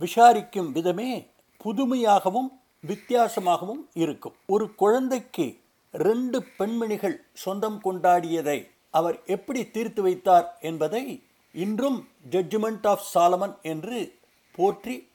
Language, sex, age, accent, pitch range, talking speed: Tamil, male, 50-69, native, 165-230 Hz, 85 wpm